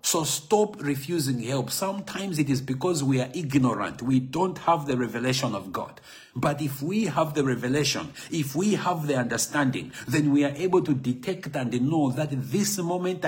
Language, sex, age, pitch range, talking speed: English, male, 50-69, 130-165 Hz, 180 wpm